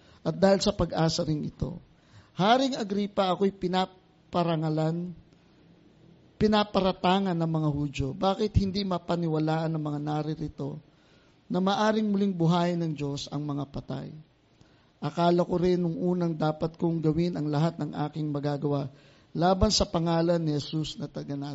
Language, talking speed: English, 135 wpm